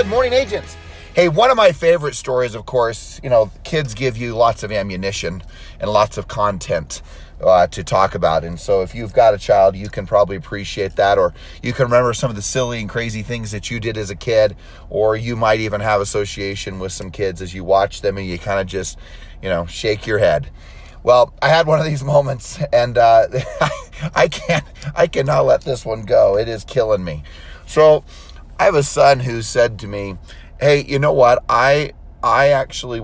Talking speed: 210 wpm